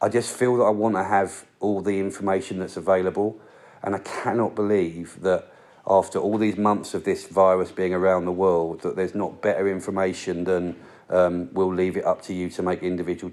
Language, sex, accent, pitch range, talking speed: English, male, British, 90-105 Hz, 205 wpm